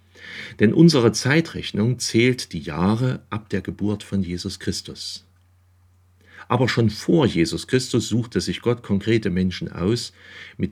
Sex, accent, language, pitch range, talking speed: male, German, German, 90-115 Hz, 135 wpm